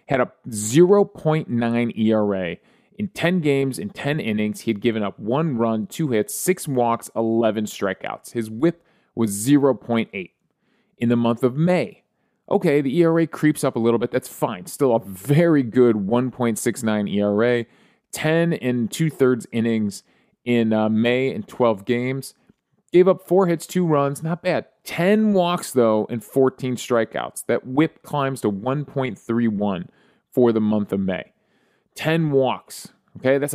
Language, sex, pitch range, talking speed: English, male, 115-155 Hz, 155 wpm